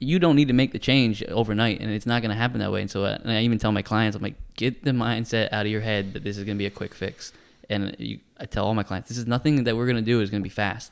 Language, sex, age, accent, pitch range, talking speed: English, male, 10-29, American, 100-120 Hz, 345 wpm